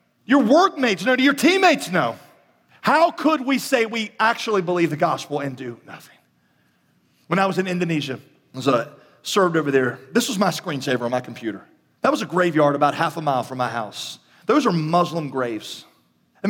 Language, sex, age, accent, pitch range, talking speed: English, male, 40-59, American, 120-175 Hz, 185 wpm